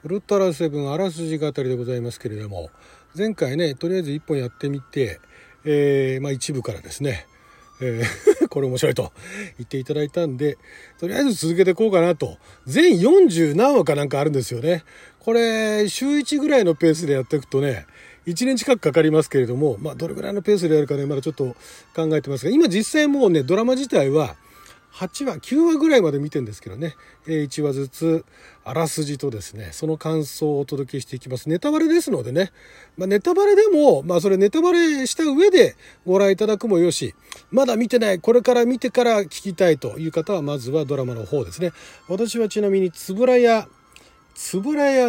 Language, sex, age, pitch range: Japanese, male, 40-59, 145-235 Hz